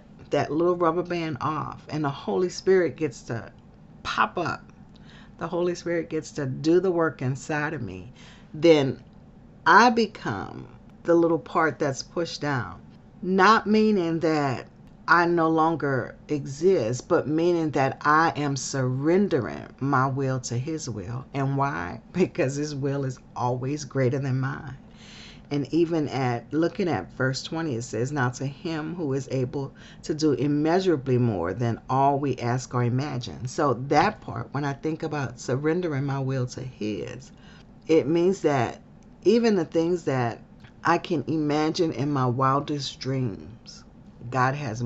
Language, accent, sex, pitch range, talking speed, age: English, American, female, 130-165 Hz, 150 wpm, 40-59